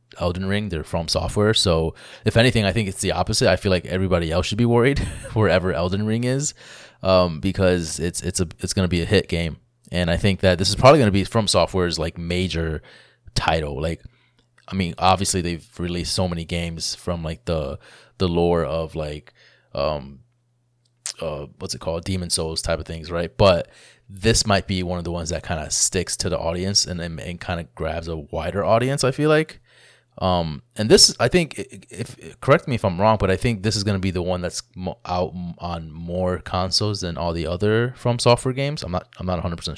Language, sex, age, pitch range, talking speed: English, male, 20-39, 85-105 Hz, 215 wpm